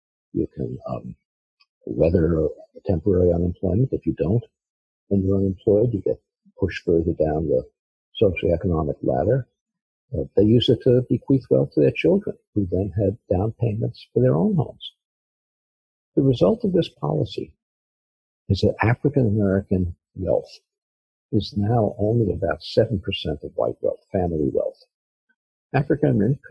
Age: 50-69